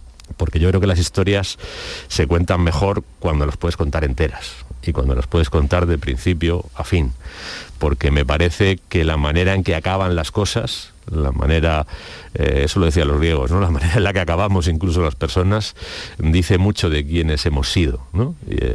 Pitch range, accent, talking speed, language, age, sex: 75-90 Hz, Spanish, 190 wpm, Spanish, 40-59, male